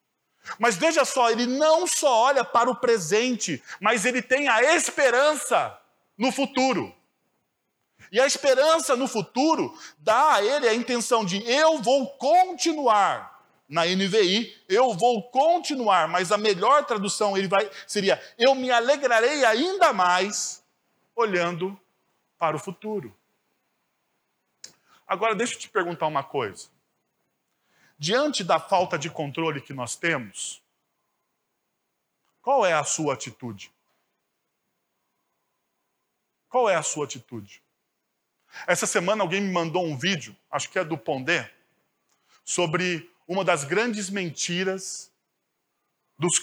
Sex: male